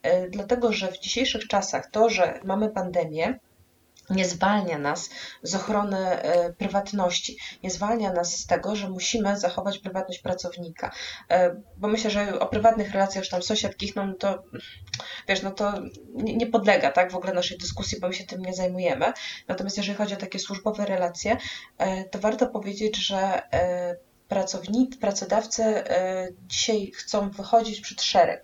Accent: native